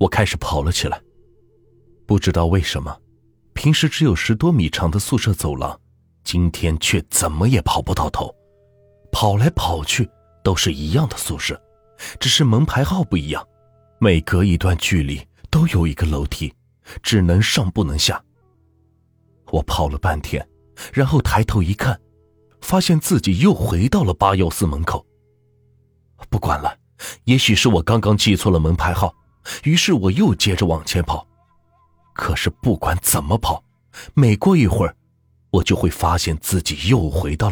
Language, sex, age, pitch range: Chinese, male, 30-49, 85-110 Hz